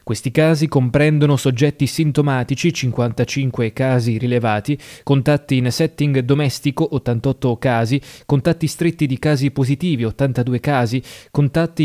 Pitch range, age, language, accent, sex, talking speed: 125-150 Hz, 20-39, Italian, native, male, 110 wpm